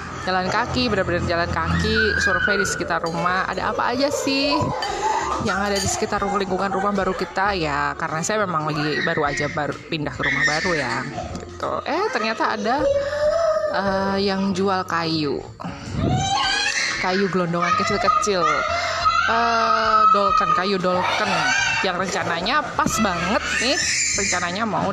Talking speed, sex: 135 wpm, female